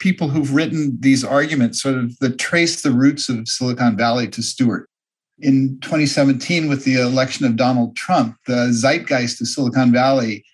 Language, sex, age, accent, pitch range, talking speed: English, male, 50-69, American, 125-165 Hz, 165 wpm